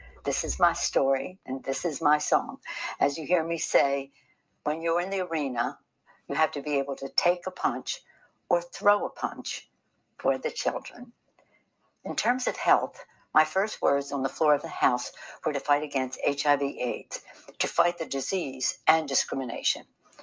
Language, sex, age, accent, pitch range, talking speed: English, female, 60-79, American, 140-175 Hz, 180 wpm